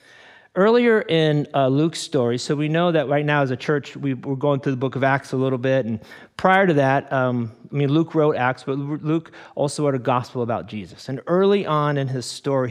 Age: 40-59